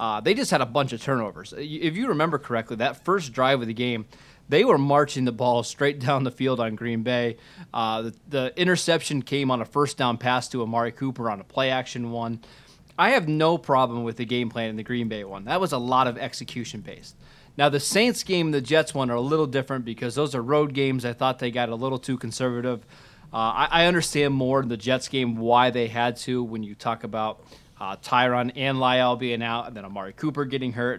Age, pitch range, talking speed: 30-49, 120-145 Hz, 235 wpm